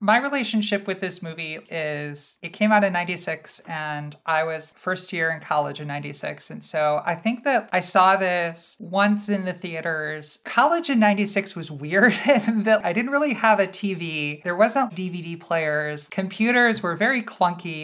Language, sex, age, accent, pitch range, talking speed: English, male, 30-49, American, 160-195 Hz, 180 wpm